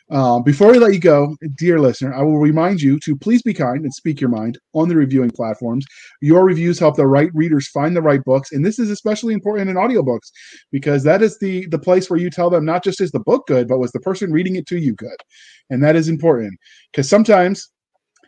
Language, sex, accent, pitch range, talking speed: English, male, American, 130-170 Hz, 235 wpm